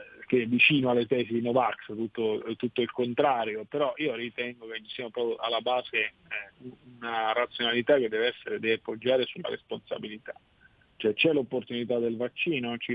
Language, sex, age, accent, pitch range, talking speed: Italian, male, 50-69, native, 120-155 Hz, 165 wpm